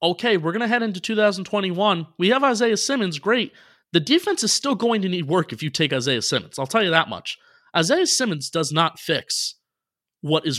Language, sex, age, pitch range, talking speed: English, male, 30-49, 140-185 Hz, 210 wpm